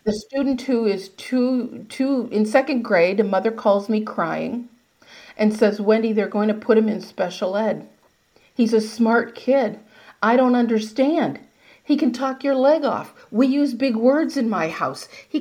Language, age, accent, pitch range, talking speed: English, 50-69, American, 210-265 Hz, 180 wpm